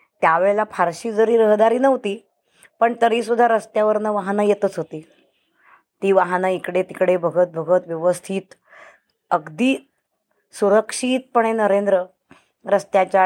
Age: 20-39